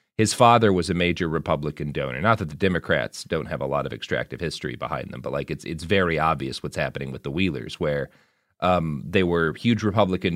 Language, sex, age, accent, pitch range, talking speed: English, male, 30-49, American, 80-105 Hz, 215 wpm